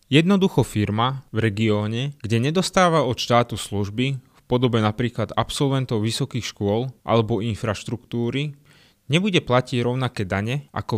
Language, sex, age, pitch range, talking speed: Slovak, male, 20-39, 110-135 Hz, 120 wpm